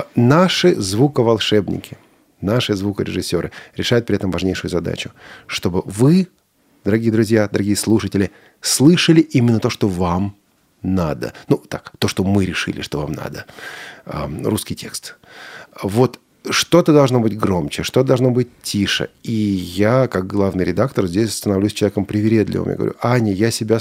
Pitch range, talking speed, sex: 95-125 Hz, 140 wpm, male